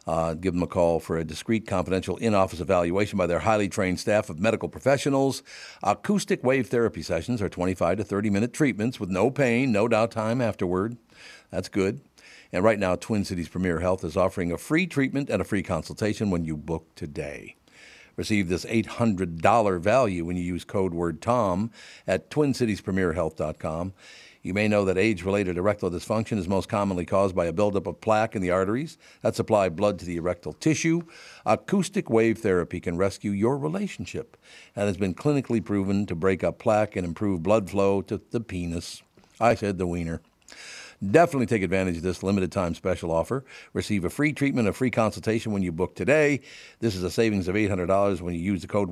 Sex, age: male, 50-69